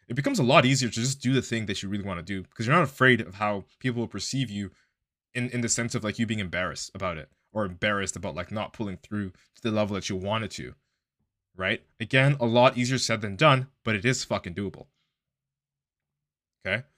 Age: 20-39